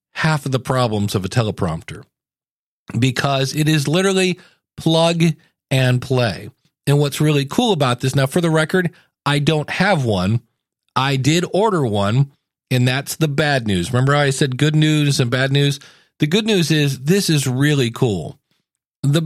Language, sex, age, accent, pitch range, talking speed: English, male, 40-59, American, 130-170 Hz, 170 wpm